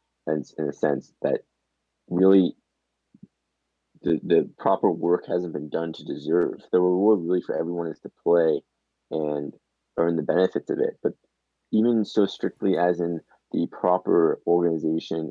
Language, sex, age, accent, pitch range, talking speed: English, male, 20-39, American, 80-95 Hz, 150 wpm